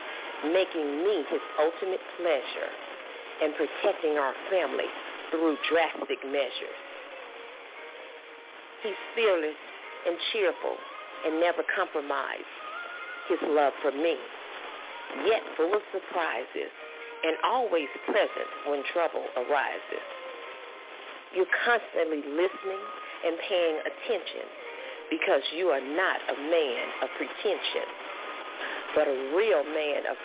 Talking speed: 105 wpm